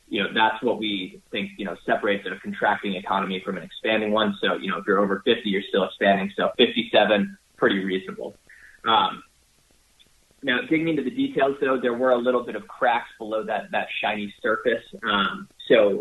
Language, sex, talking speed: English, male, 190 wpm